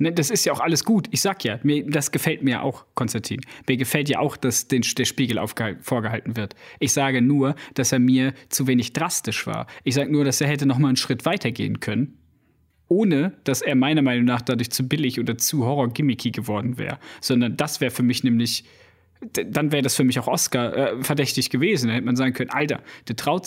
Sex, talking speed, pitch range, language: male, 215 wpm, 130-165 Hz, German